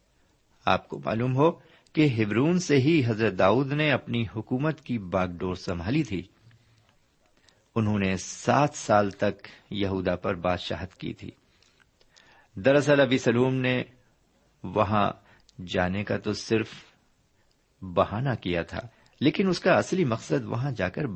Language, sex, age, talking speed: Urdu, male, 50-69, 135 wpm